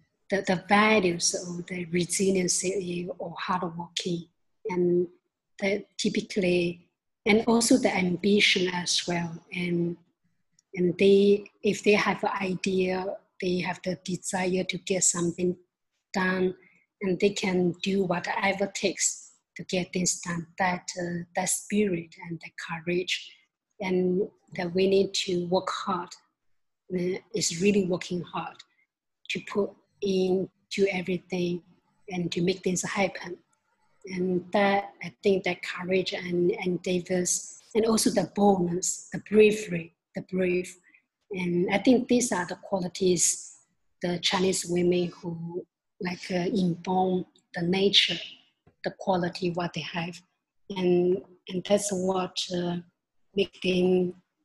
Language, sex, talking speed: English, female, 130 wpm